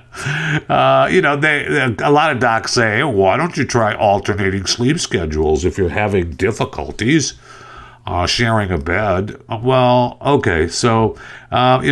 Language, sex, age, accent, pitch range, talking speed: English, male, 50-69, American, 85-120 Hz, 150 wpm